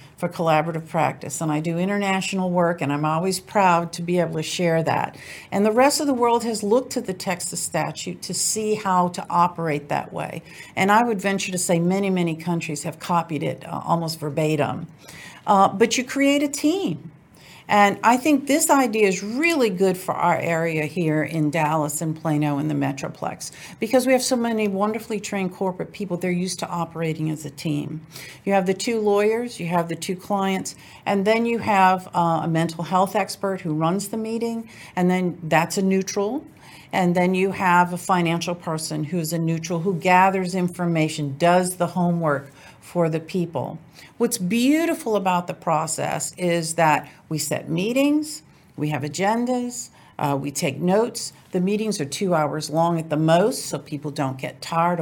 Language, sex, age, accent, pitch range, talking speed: English, female, 50-69, American, 160-205 Hz, 185 wpm